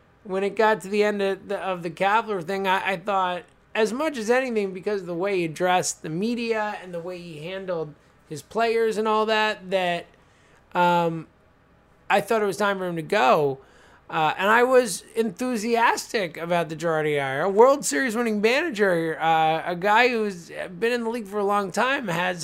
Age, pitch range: 20-39, 150-205 Hz